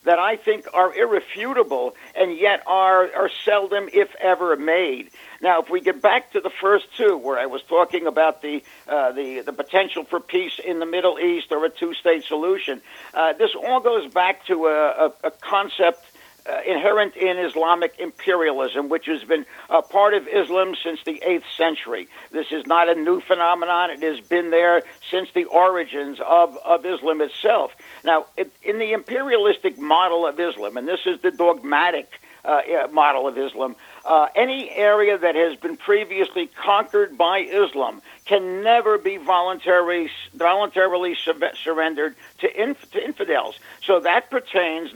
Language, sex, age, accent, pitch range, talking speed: English, male, 60-79, American, 165-205 Hz, 160 wpm